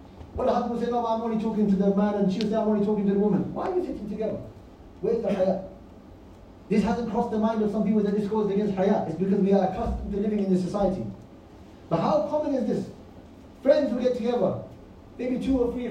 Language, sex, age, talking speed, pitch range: English, male, 30-49, 250 wpm, 180-230 Hz